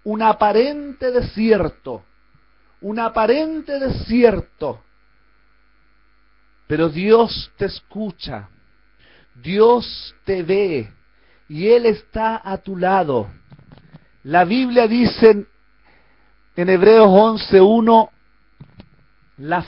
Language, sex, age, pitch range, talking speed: Spanish, male, 40-59, 180-225 Hz, 85 wpm